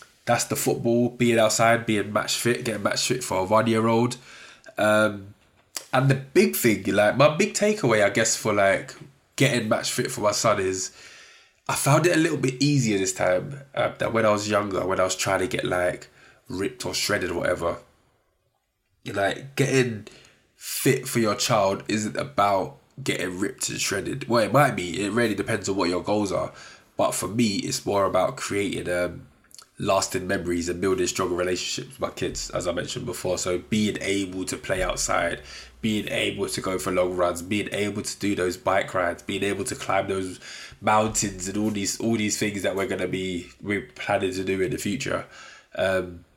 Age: 20-39